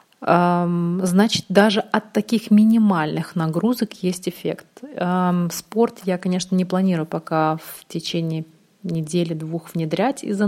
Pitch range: 170-205 Hz